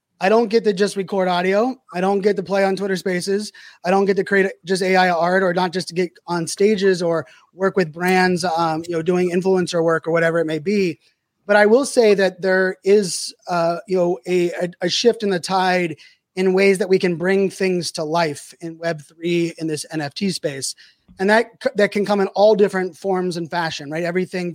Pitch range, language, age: 170-195 Hz, English, 20-39